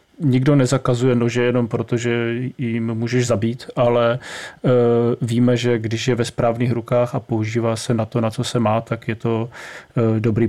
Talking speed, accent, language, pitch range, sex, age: 170 wpm, native, Czech, 120-135 Hz, male, 30-49